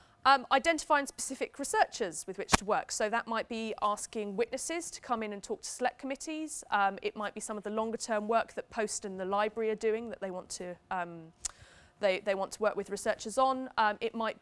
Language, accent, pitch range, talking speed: English, British, 195-245 Hz, 230 wpm